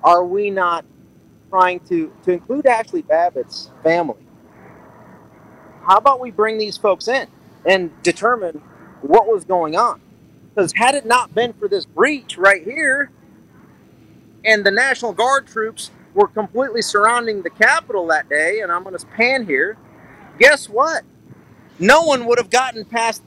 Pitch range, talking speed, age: 170-240 Hz, 150 wpm, 40-59